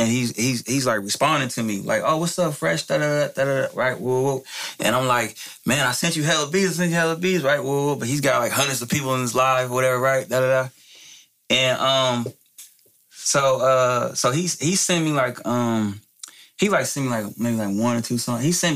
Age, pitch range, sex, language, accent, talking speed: 20-39, 115-140 Hz, male, English, American, 230 wpm